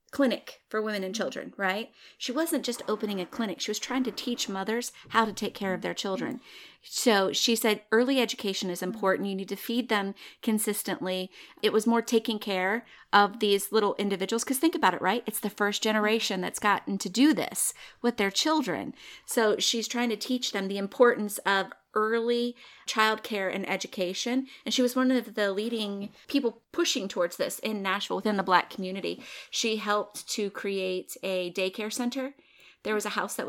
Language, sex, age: English, female, 30-49